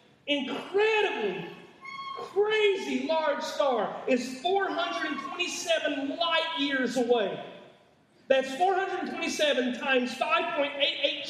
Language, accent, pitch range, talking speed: English, American, 230-320 Hz, 70 wpm